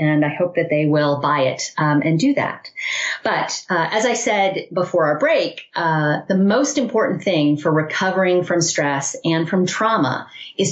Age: 30-49